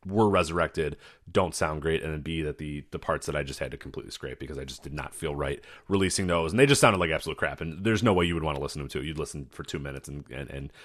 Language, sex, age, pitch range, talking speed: English, male, 30-49, 75-90 Hz, 305 wpm